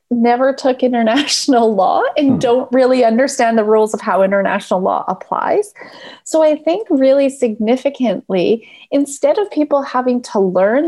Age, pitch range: 30-49, 215-275 Hz